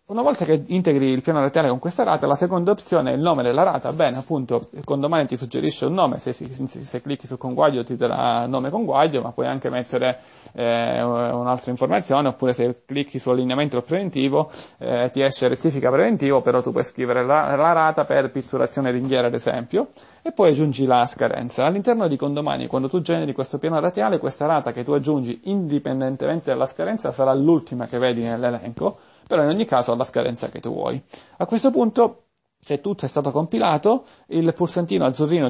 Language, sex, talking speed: Italian, male, 195 wpm